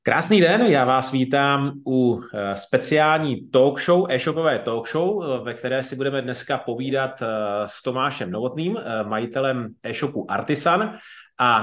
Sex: male